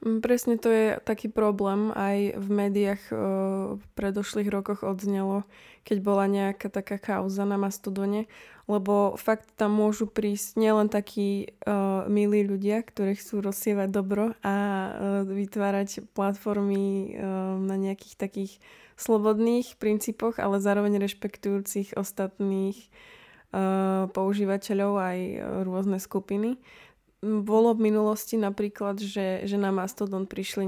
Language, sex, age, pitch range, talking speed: Slovak, female, 20-39, 195-210 Hz, 120 wpm